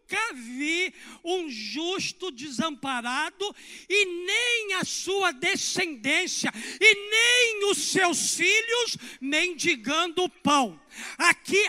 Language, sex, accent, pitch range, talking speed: Portuguese, male, Brazilian, 260-350 Hz, 90 wpm